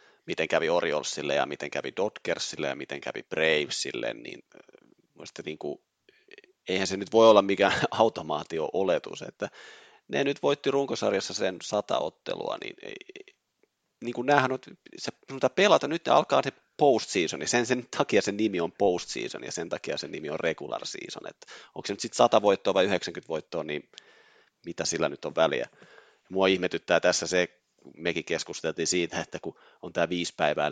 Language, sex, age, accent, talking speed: Finnish, male, 30-49, native, 160 wpm